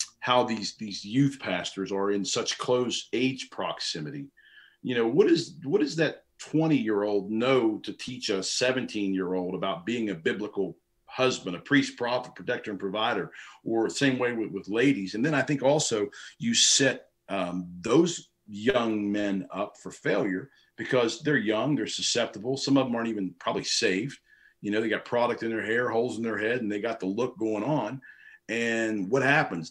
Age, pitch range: 40-59, 105-140 Hz